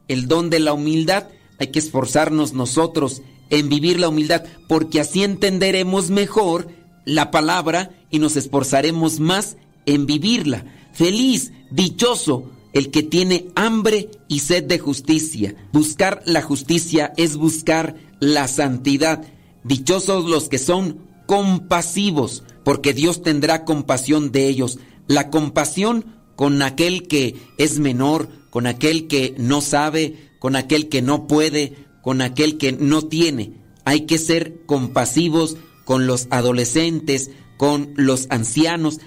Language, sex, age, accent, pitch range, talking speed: Spanish, male, 40-59, Mexican, 140-170 Hz, 130 wpm